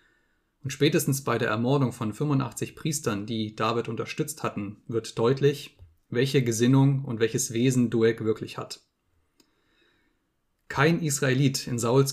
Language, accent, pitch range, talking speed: German, German, 115-135 Hz, 130 wpm